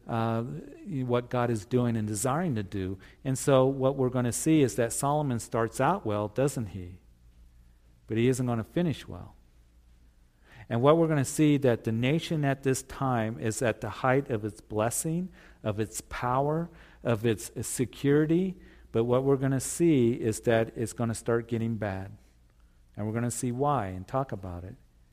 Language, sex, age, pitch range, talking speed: English, male, 50-69, 105-130 Hz, 195 wpm